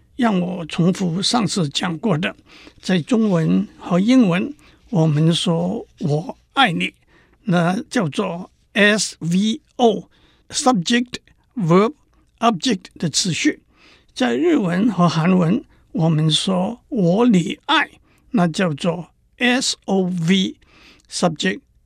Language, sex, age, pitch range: Chinese, male, 60-79, 175-235 Hz